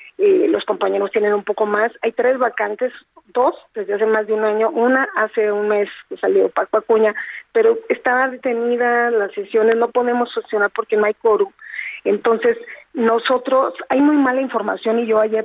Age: 40-59